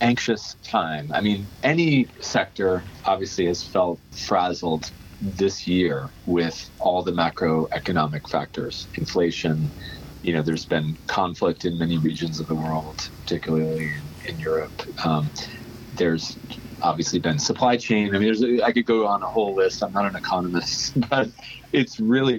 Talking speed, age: 155 wpm, 40-59